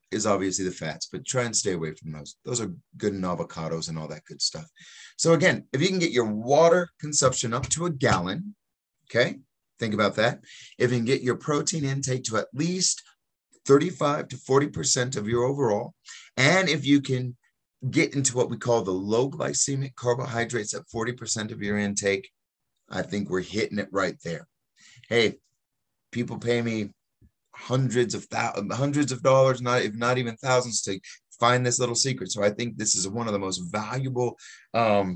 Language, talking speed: English, 185 wpm